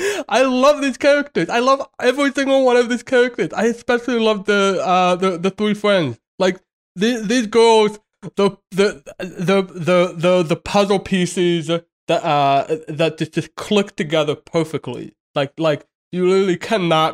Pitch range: 140-190 Hz